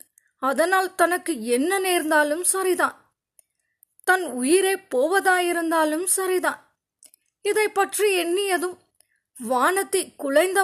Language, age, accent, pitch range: Tamil, 20-39, native, 340-385 Hz